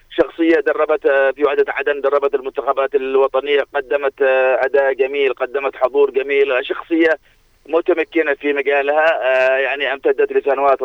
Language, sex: Arabic, male